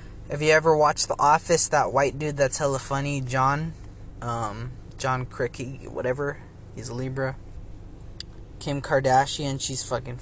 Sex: male